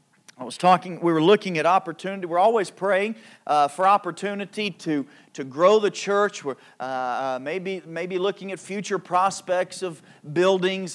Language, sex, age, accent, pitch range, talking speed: English, male, 40-59, American, 165-210 Hz, 160 wpm